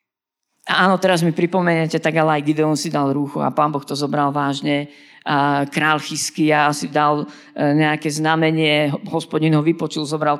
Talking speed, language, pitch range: 160 wpm, Slovak, 145-185 Hz